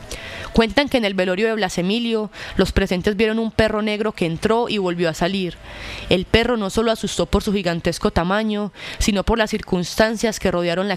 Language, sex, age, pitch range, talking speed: Spanish, female, 20-39, 175-210 Hz, 195 wpm